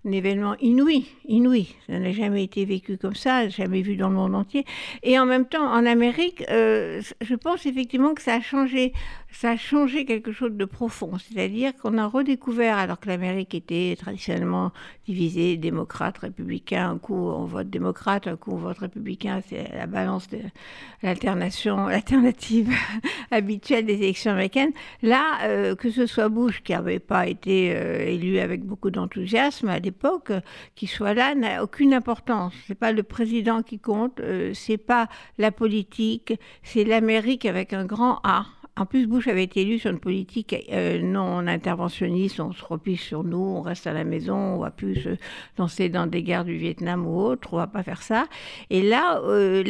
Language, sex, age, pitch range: French, female, 60-79, 190-245 Hz